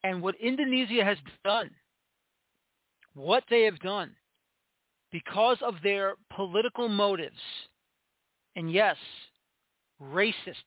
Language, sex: English, male